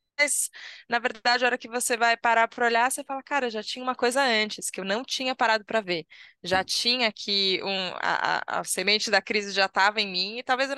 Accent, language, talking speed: Brazilian, Portuguese, 240 wpm